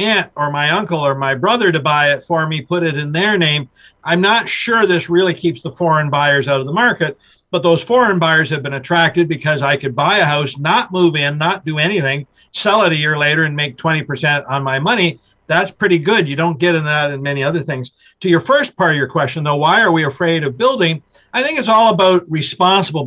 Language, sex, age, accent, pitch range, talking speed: English, male, 50-69, American, 145-180 Hz, 240 wpm